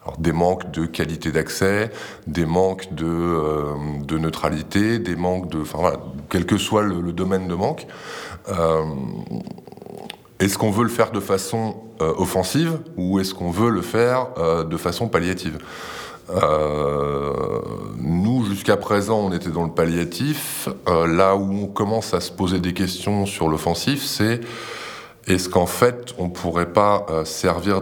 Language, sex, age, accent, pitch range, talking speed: French, male, 20-39, French, 80-100 Hz, 160 wpm